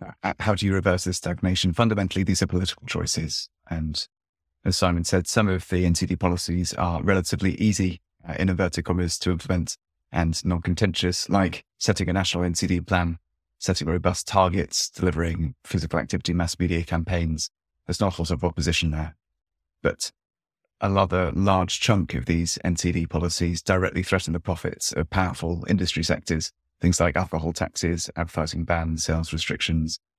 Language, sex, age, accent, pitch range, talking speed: English, male, 30-49, British, 85-95 Hz, 155 wpm